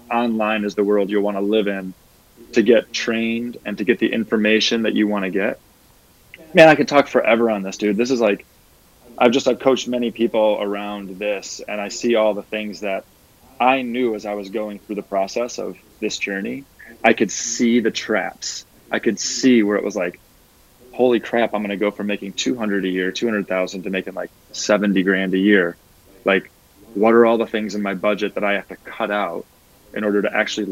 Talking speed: 220 wpm